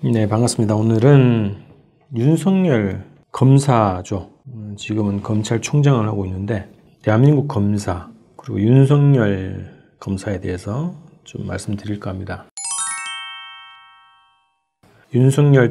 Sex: male